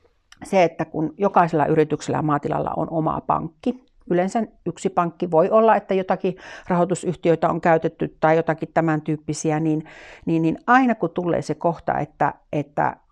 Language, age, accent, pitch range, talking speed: Finnish, 60-79, native, 150-185 Hz, 155 wpm